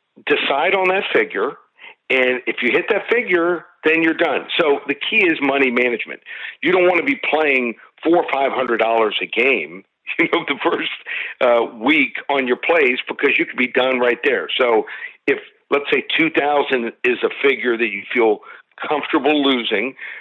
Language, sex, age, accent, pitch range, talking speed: English, male, 50-69, American, 125-180 Hz, 185 wpm